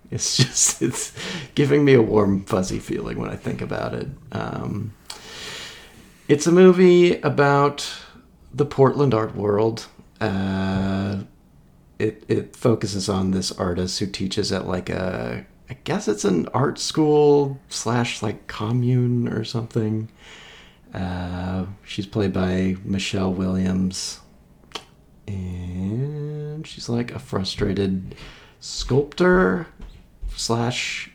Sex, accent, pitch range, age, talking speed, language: male, American, 95-130 Hz, 40-59, 115 wpm, English